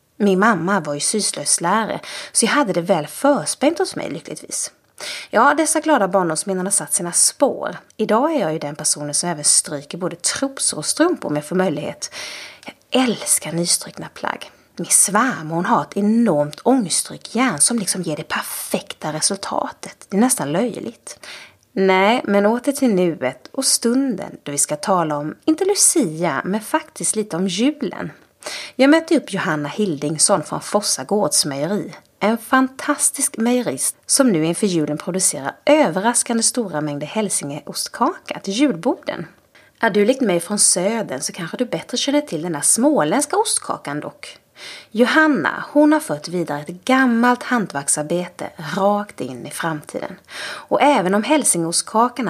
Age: 30-49